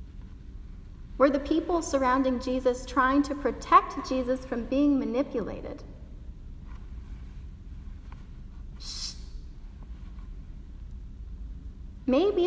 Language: English